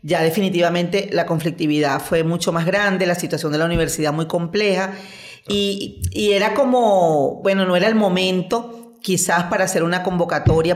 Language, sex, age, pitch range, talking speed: Spanish, female, 40-59, 160-200 Hz, 160 wpm